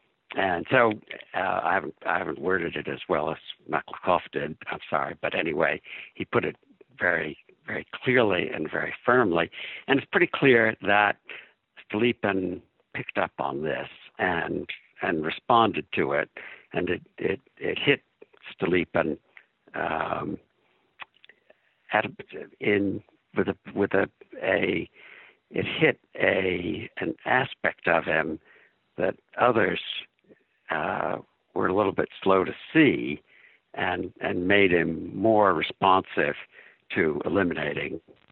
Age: 60-79